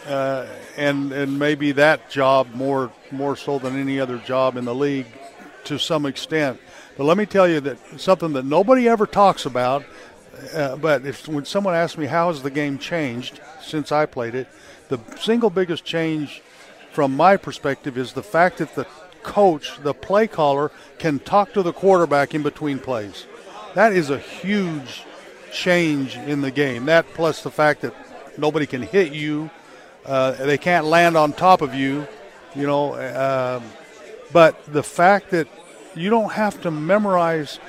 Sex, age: male, 50-69